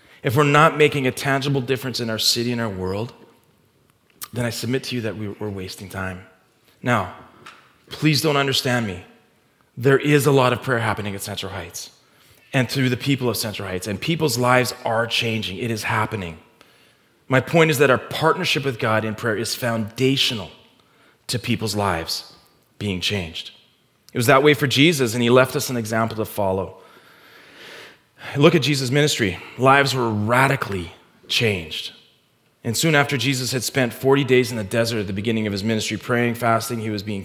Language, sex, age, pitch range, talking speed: English, male, 30-49, 105-135 Hz, 180 wpm